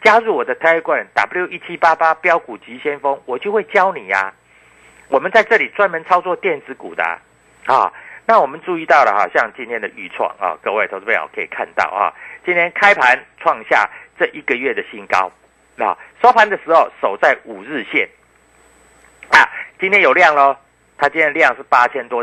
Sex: male